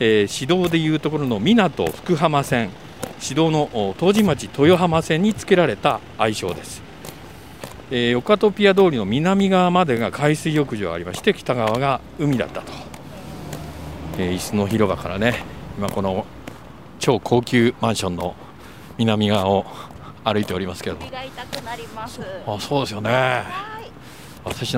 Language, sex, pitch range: Japanese, male, 100-150 Hz